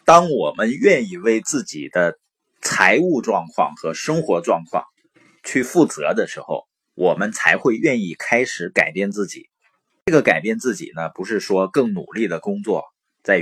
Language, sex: Chinese, male